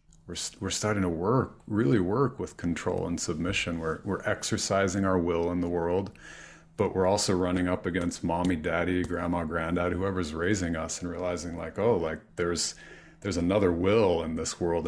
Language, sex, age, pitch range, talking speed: English, male, 40-59, 85-100 Hz, 180 wpm